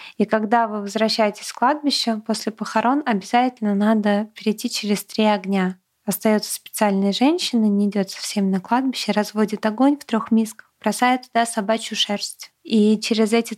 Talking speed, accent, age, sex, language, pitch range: 155 wpm, native, 20-39, female, Russian, 205-225 Hz